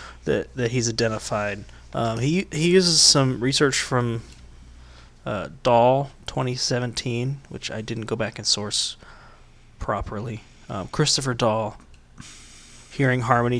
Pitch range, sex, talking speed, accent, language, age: 115-140 Hz, male, 120 wpm, American, English, 20-39